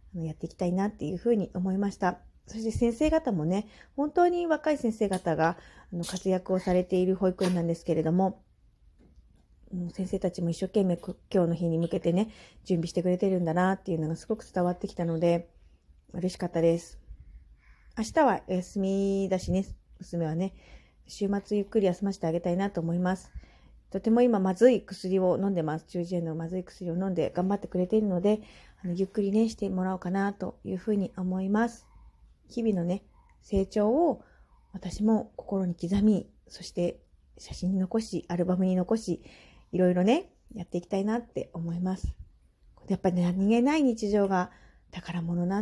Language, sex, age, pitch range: Japanese, female, 40-59, 175-215 Hz